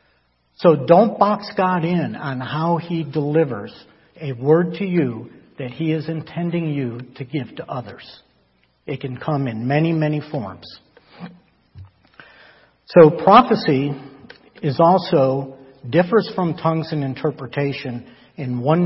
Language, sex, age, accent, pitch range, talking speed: English, male, 60-79, American, 125-165 Hz, 125 wpm